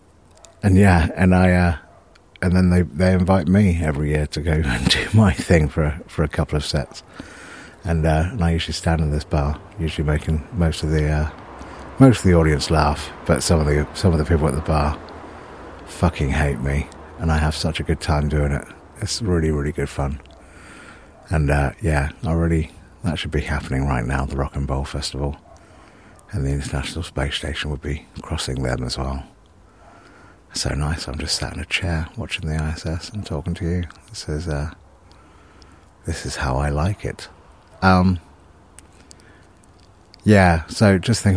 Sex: male